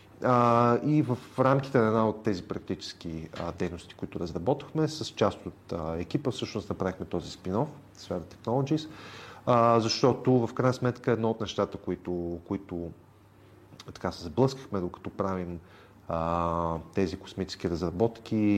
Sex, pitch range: male, 95-120 Hz